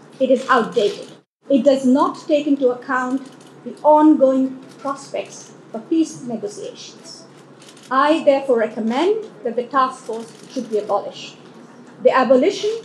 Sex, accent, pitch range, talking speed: female, Indian, 220-280 Hz, 125 wpm